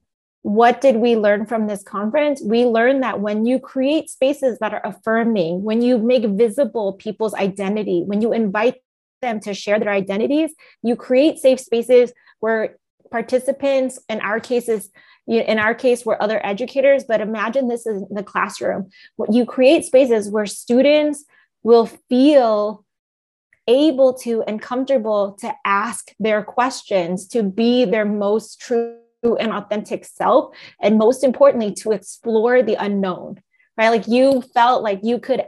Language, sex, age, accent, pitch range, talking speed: English, female, 20-39, American, 205-250 Hz, 150 wpm